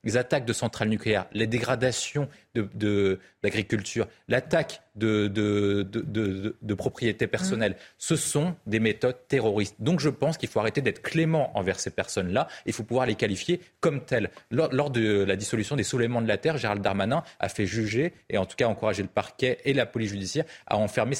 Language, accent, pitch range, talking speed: French, French, 105-140 Hz, 200 wpm